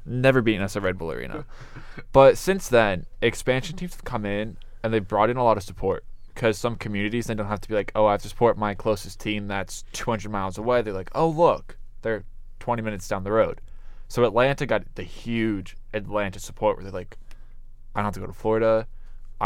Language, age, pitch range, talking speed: English, 20-39, 100-115 Hz, 220 wpm